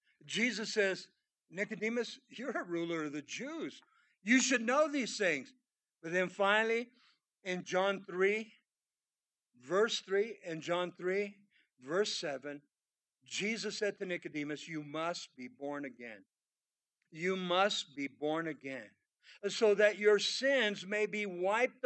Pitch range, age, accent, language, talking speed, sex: 150-210 Hz, 60-79, American, English, 130 wpm, male